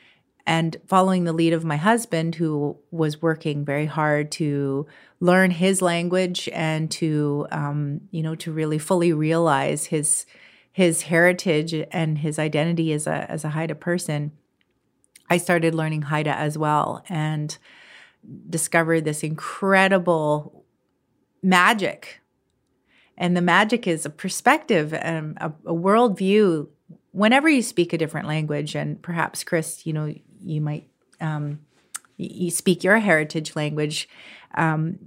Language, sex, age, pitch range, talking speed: English, female, 30-49, 155-185 Hz, 135 wpm